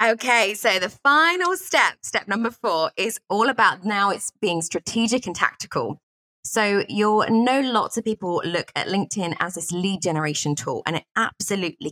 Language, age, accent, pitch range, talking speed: English, 20-39, British, 160-220 Hz, 170 wpm